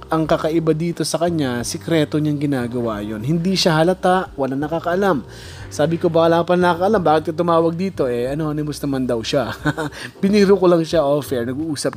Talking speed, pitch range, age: 180 wpm, 120-165 Hz, 20-39